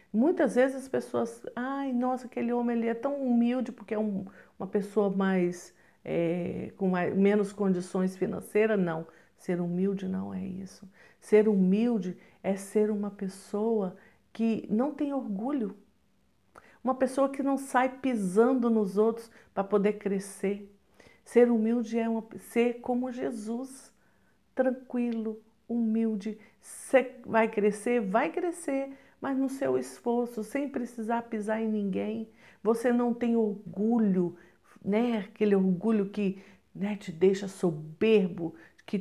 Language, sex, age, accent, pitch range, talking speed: Portuguese, female, 50-69, Brazilian, 195-240 Hz, 135 wpm